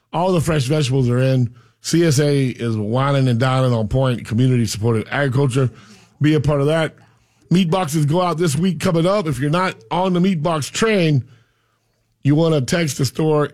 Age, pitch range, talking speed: 40-59, 120-155 Hz, 190 wpm